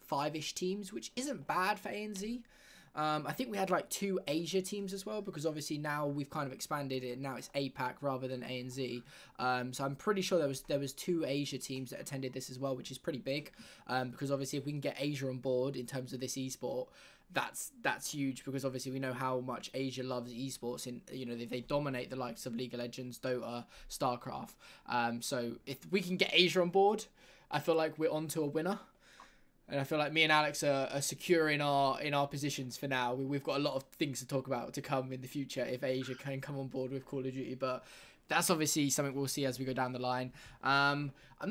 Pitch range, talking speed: 130-165 Hz, 245 wpm